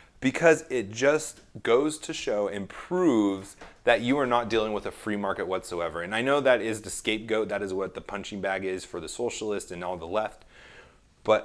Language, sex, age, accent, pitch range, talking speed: English, male, 30-49, American, 95-140 Hz, 210 wpm